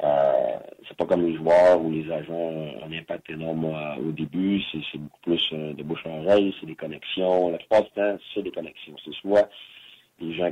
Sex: male